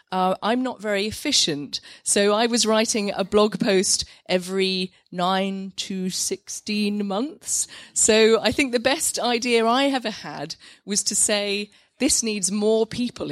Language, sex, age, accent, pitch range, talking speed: English, female, 30-49, British, 185-245 Hz, 150 wpm